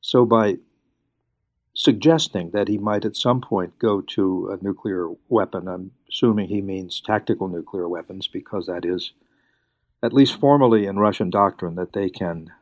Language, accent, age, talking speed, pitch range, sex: English, American, 60-79, 155 wpm, 90-110 Hz, male